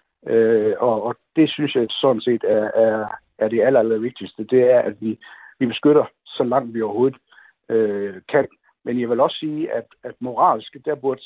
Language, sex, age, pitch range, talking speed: Danish, male, 60-79, 110-150 Hz, 190 wpm